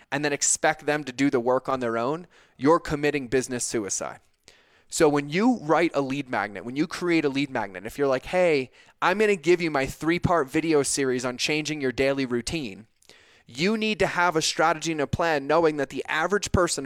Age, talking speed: 20-39, 215 wpm